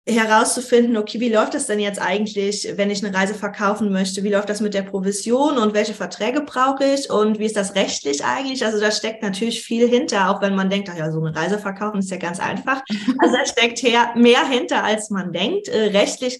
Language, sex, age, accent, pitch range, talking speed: German, female, 20-39, German, 195-225 Hz, 225 wpm